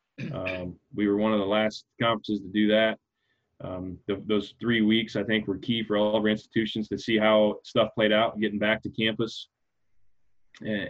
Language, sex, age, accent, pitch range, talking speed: English, male, 20-39, American, 105-120 Hz, 200 wpm